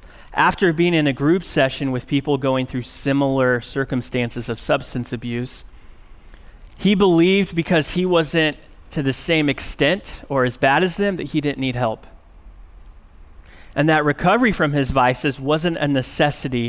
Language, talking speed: English, 155 wpm